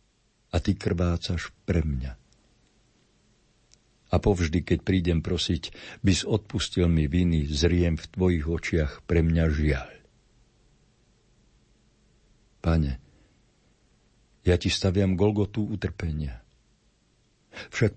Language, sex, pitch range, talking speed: Slovak, male, 75-100 Hz, 95 wpm